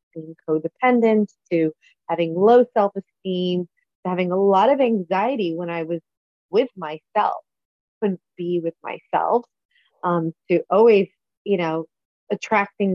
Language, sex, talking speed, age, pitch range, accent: English, female, 125 wpm, 30-49, 175-205 Hz, American